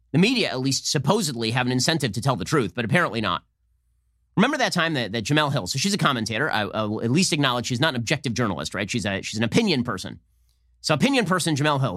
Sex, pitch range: male, 115-160 Hz